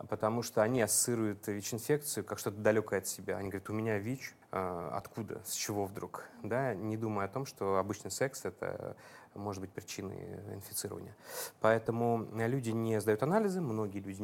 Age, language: 30-49, Russian